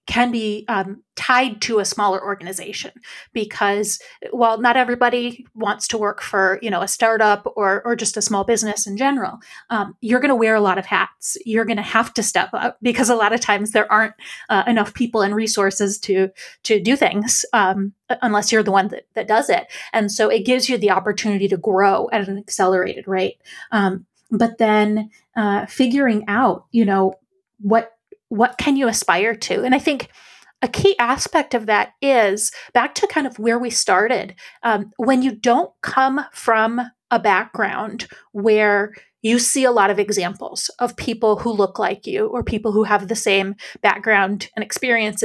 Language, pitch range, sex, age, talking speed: English, 205-245 Hz, female, 30-49, 190 wpm